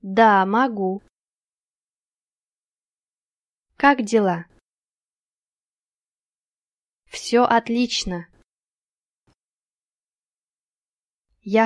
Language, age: Portuguese, 20-39